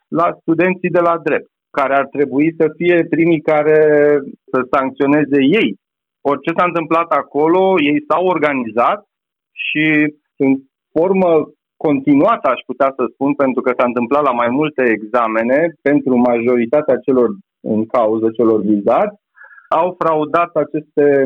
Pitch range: 135-170 Hz